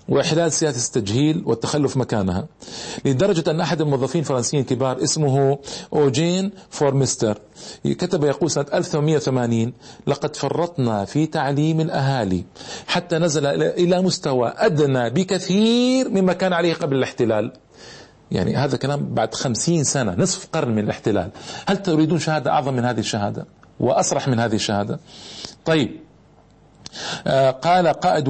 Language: Arabic